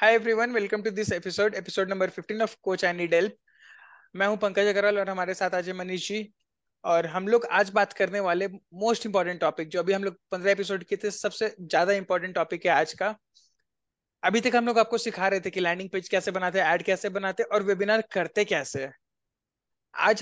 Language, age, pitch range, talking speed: Hindi, 20-39, 190-230 Hz, 195 wpm